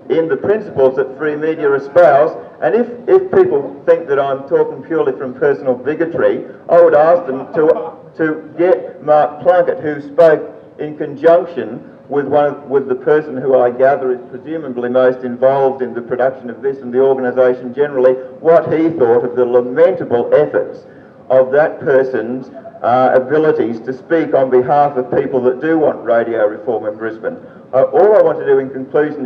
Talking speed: 180 wpm